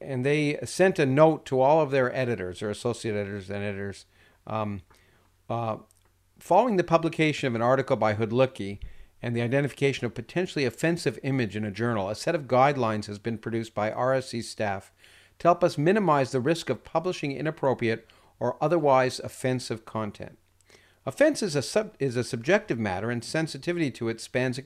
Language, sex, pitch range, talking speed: English, male, 115-155 Hz, 170 wpm